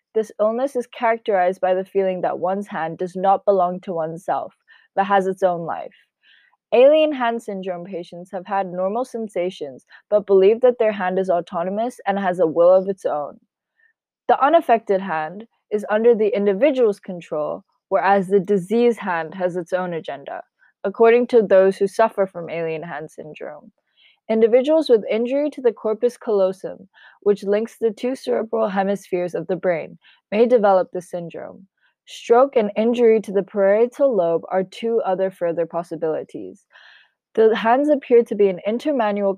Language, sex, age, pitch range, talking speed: English, female, 20-39, 185-230 Hz, 160 wpm